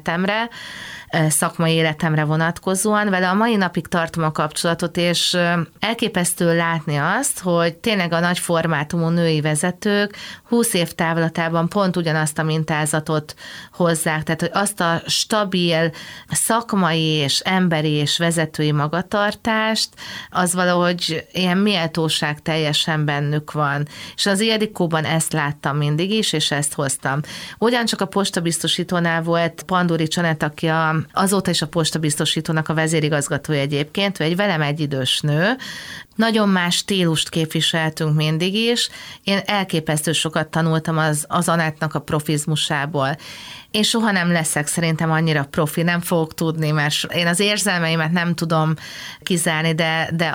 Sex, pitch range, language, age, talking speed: female, 155-185 Hz, Hungarian, 30-49, 130 wpm